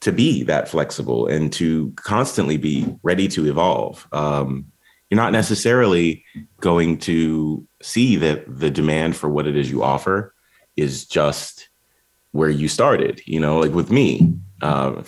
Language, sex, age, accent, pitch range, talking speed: English, male, 30-49, American, 75-90 Hz, 150 wpm